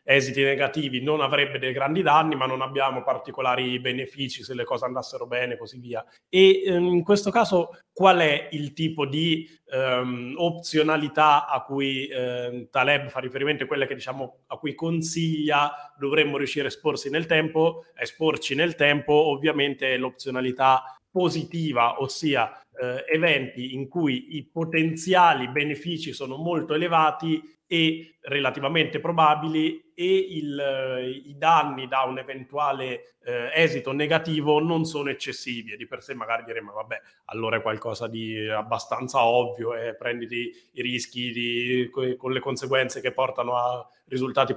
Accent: native